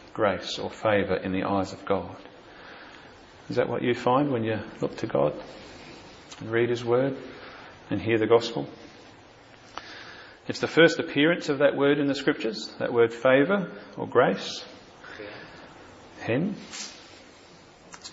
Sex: male